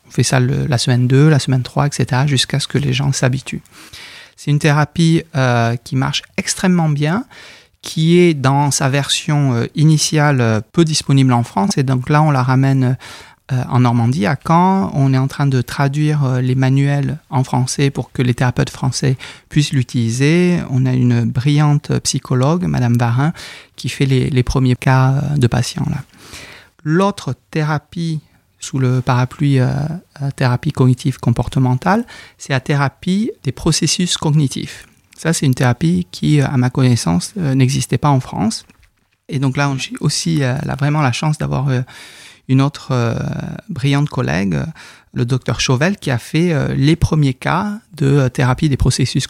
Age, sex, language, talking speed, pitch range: 40-59, male, French, 175 wpm, 130-150 Hz